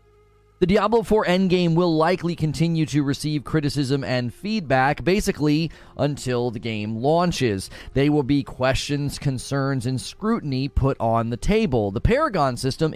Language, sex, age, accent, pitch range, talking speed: English, male, 30-49, American, 125-165 Hz, 145 wpm